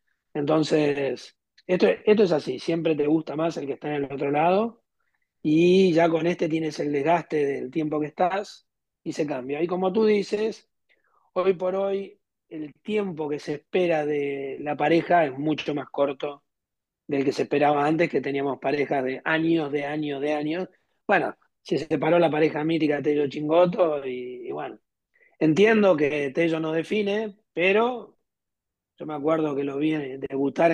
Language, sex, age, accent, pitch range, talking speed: Spanish, male, 30-49, Argentinian, 145-175 Hz, 175 wpm